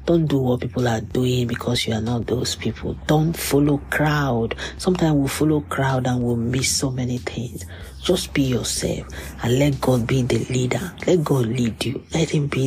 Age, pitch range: 40-59, 110-145 Hz